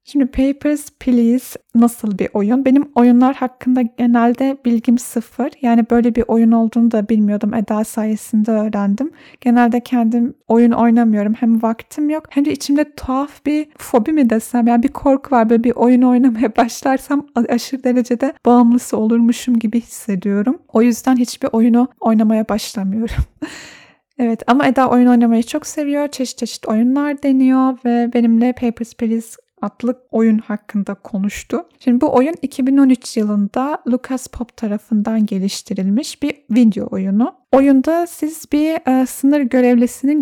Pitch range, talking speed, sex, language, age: 230-265 Hz, 145 wpm, female, Turkish, 30-49